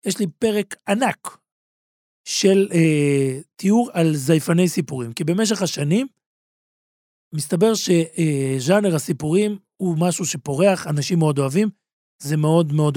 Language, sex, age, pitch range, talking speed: Hebrew, male, 40-59, 155-210 Hz, 120 wpm